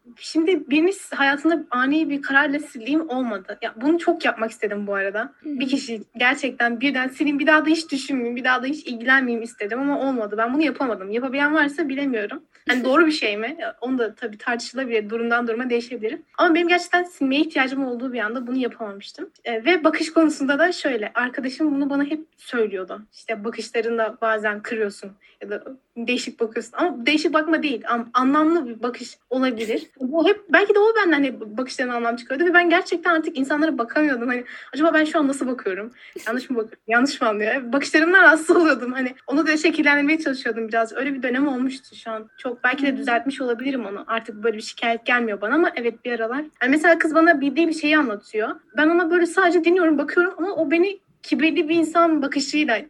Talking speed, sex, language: 190 wpm, female, Turkish